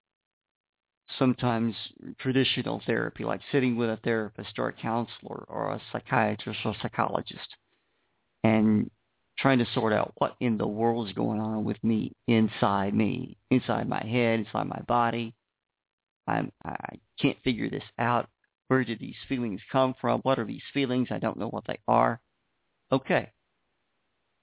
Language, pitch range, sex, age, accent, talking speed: English, 110-135 Hz, male, 50-69, American, 145 wpm